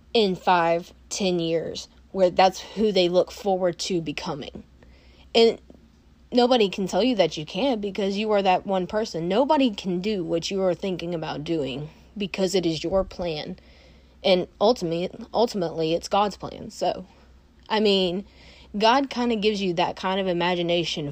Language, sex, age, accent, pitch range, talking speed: English, female, 20-39, American, 175-235 Hz, 165 wpm